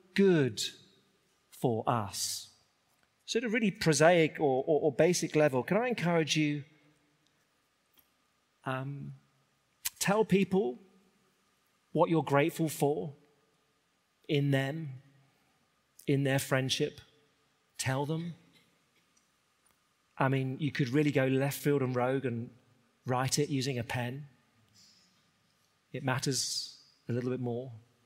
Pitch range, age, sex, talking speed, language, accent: 125-155 Hz, 40-59, male, 115 wpm, English, British